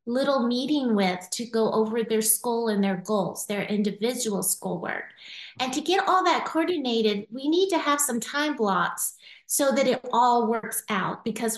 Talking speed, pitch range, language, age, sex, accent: 175 wpm, 215-260 Hz, English, 30-49, female, American